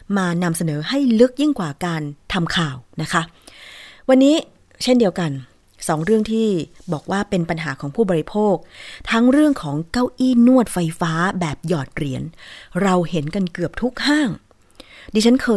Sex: female